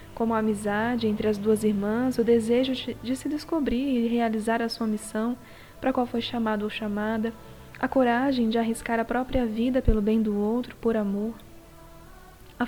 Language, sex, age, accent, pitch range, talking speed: Portuguese, female, 10-29, Brazilian, 225-265 Hz, 180 wpm